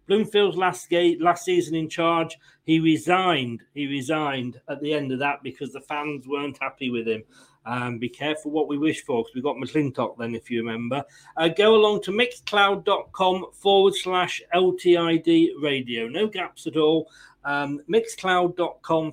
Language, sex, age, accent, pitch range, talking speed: English, male, 40-59, British, 135-180 Hz, 165 wpm